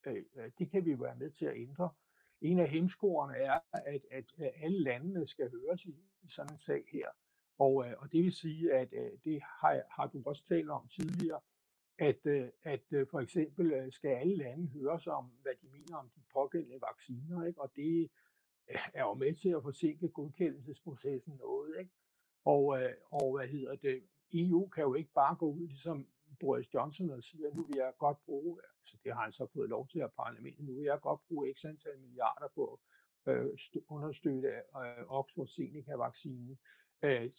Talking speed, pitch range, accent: 180 wpm, 135-175 Hz, native